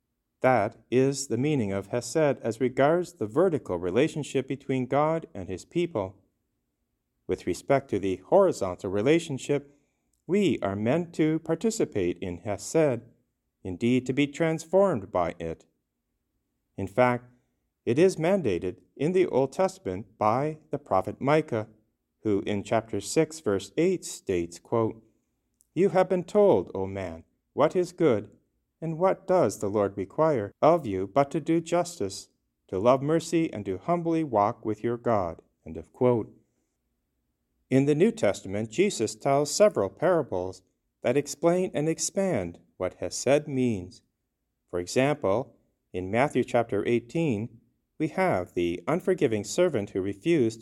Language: English